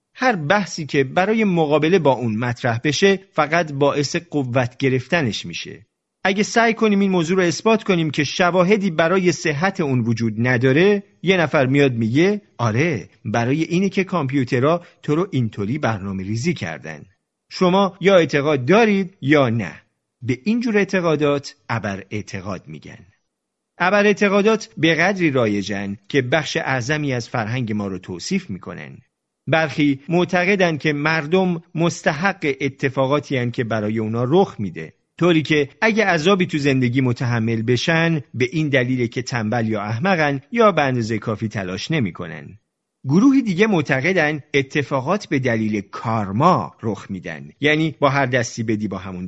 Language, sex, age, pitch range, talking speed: Persian, male, 40-59, 120-180 Hz, 145 wpm